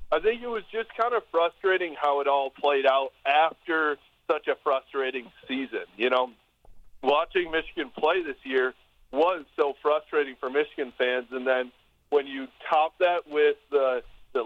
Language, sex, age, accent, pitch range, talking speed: English, male, 40-59, American, 135-185 Hz, 165 wpm